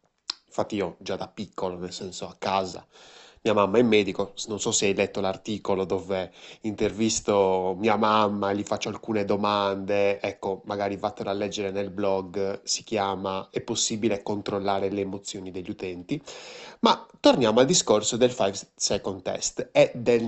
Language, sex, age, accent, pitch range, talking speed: Italian, male, 20-39, native, 100-165 Hz, 155 wpm